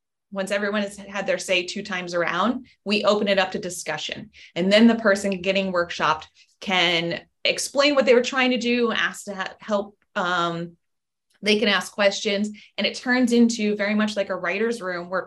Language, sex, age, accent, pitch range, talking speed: English, female, 20-39, American, 185-230 Hz, 190 wpm